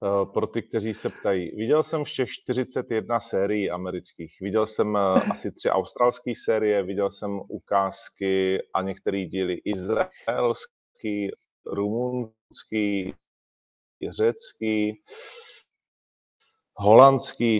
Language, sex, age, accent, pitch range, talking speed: Czech, male, 30-49, native, 100-125 Hz, 90 wpm